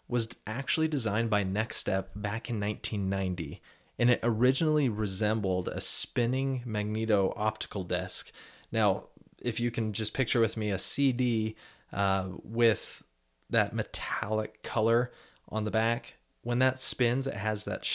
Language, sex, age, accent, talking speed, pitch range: English, male, 30-49, American, 140 wpm, 105-130 Hz